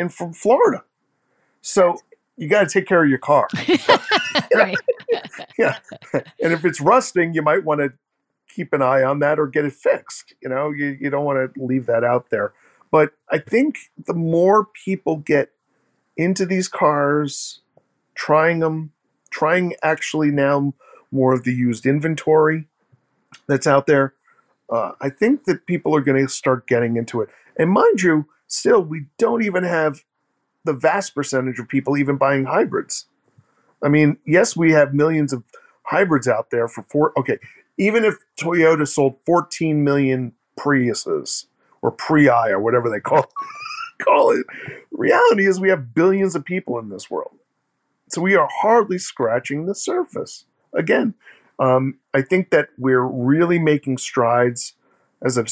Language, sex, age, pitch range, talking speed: English, male, 50-69, 135-190 Hz, 160 wpm